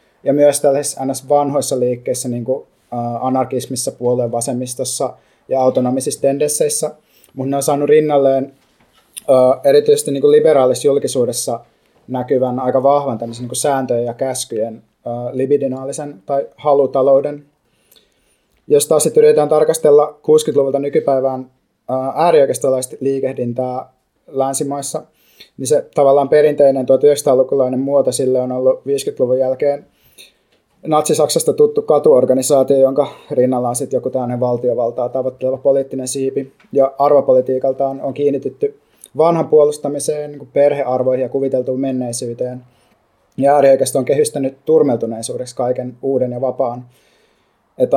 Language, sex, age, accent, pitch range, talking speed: Finnish, male, 20-39, native, 130-145 Hz, 110 wpm